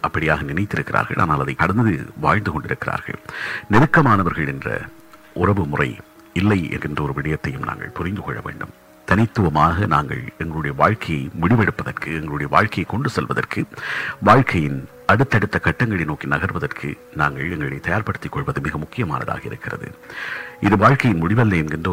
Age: 50-69